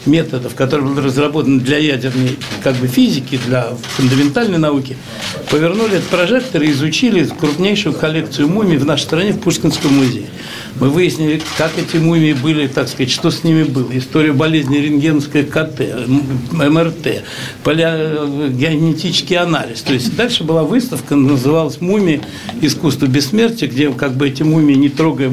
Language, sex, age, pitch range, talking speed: Russian, male, 60-79, 140-180 Hz, 145 wpm